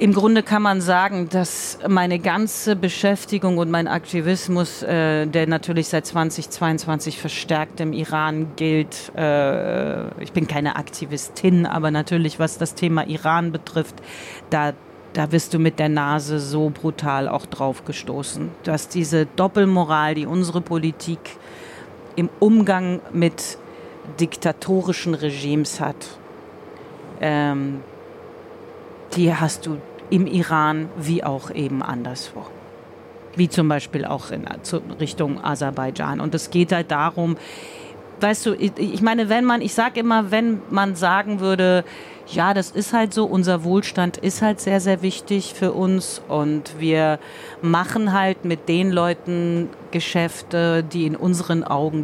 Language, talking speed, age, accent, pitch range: German, 135 wpm, 40-59, German, 155-190 Hz